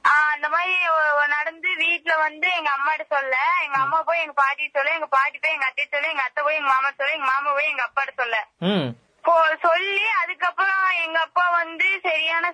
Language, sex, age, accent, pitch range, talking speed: Tamil, female, 20-39, native, 280-345 Hz, 180 wpm